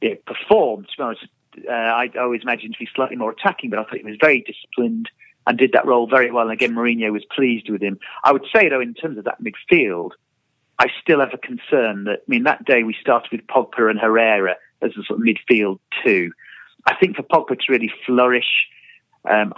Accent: British